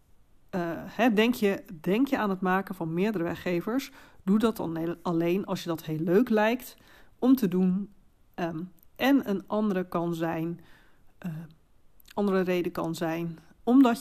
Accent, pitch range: Dutch, 170-215 Hz